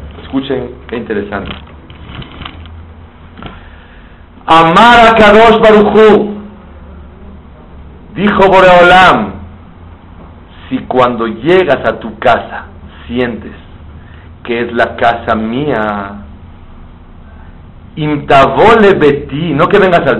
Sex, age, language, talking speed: male, 50-69, Spanish, 80 wpm